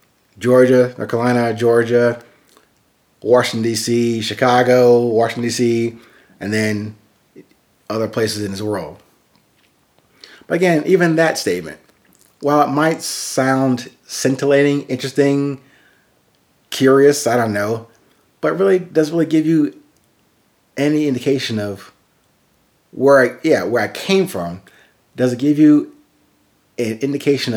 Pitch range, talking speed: 110-135 Hz, 110 wpm